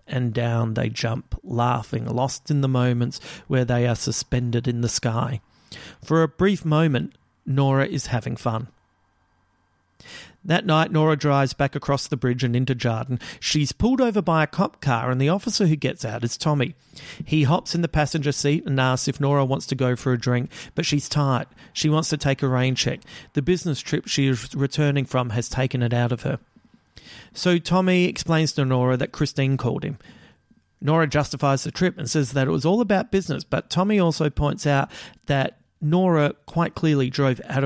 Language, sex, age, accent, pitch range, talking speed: English, male, 40-59, Australian, 125-155 Hz, 195 wpm